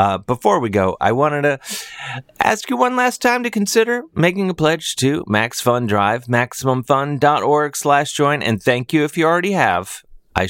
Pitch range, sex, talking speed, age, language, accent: 100-155 Hz, male, 165 wpm, 30-49, English, American